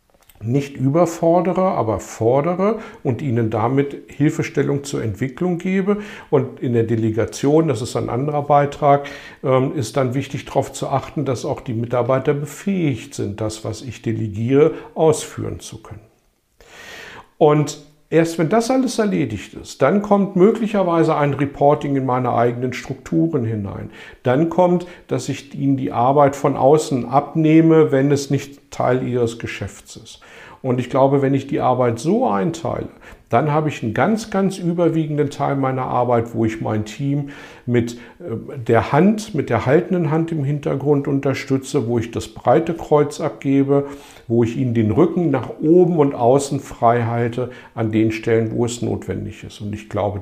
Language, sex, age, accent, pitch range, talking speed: German, male, 50-69, German, 115-155 Hz, 160 wpm